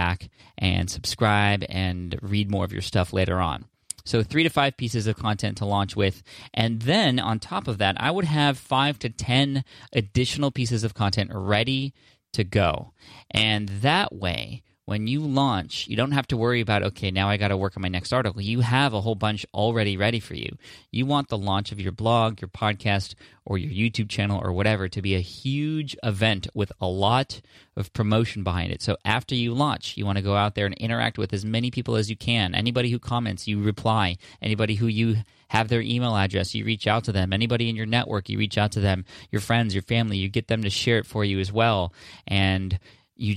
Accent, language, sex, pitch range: American, English, male, 100-115 Hz